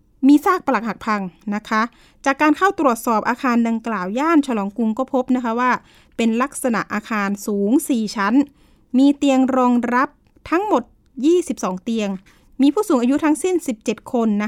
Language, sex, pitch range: Thai, female, 220-275 Hz